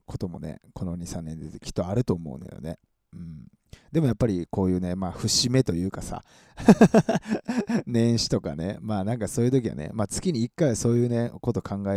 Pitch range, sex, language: 90-125 Hz, male, Japanese